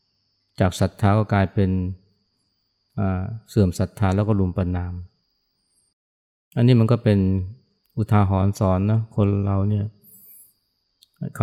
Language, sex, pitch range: Thai, male, 95-110 Hz